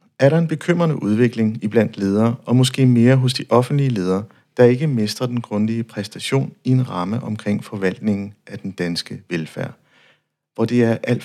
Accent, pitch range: native, 105-130 Hz